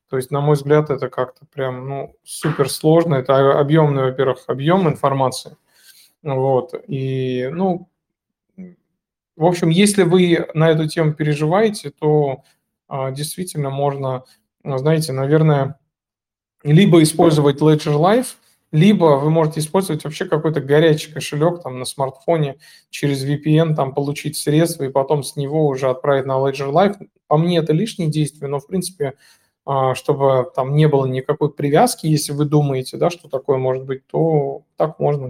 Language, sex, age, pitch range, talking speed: Russian, male, 20-39, 135-170 Hz, 145 wpm